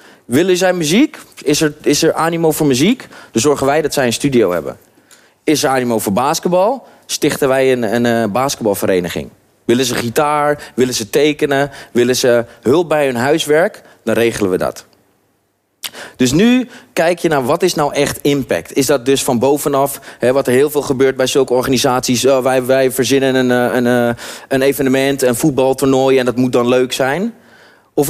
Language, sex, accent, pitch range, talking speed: Dutch, male, Dutch, 125-155 Hz, 180 wpm